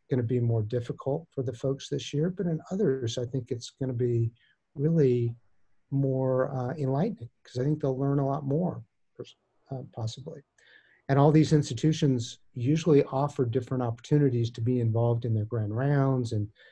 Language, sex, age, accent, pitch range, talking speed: English, male, 50-69, American, 120-150 Hz, 175 wpm